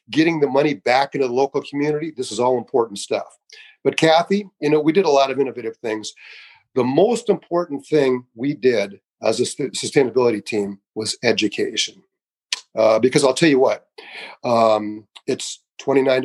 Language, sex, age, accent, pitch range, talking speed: English, male, 40-59, American, 125-175 Hz, 165 wpm